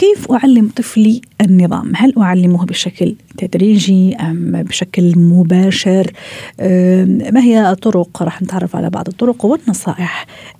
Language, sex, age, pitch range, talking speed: Arabic, female, 40-59, 180-210 Hz, 120 wpm